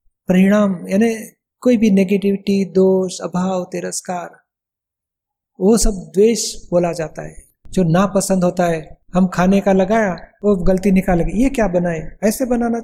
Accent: native